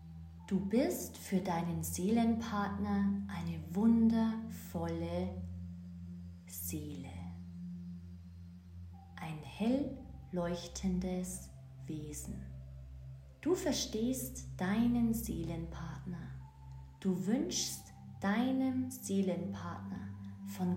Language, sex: German, female